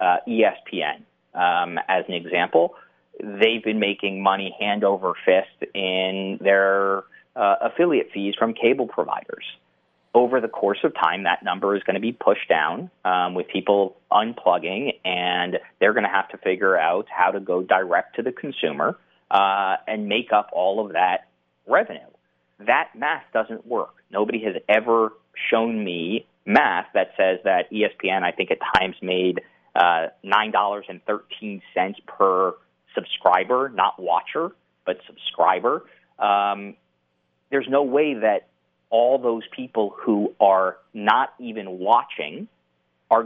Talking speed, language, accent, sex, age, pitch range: 145 wpm, English, American, male, 30-49, 90-110 Hz